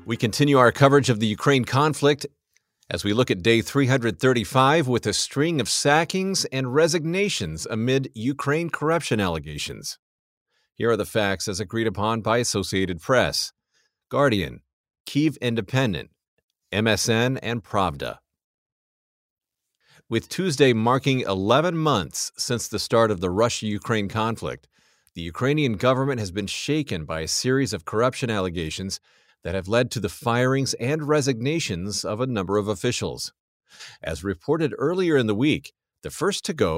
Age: 40-59